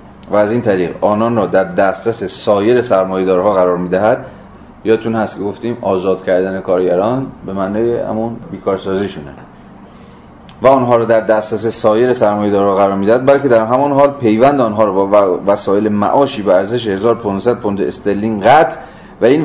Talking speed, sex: 155 wpm, male